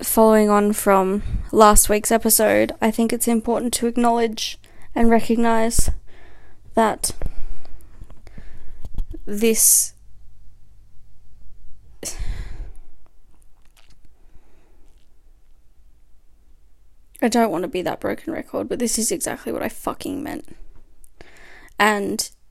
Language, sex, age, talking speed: English, female, 20-39, 90 wpm